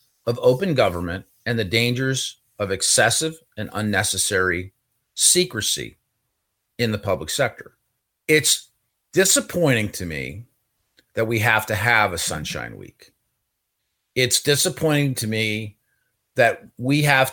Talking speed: 120 wpm